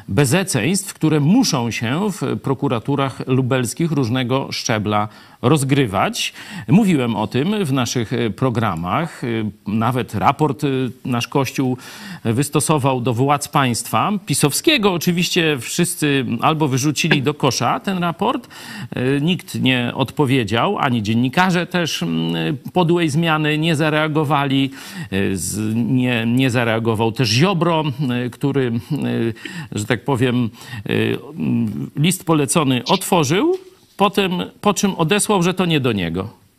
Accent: native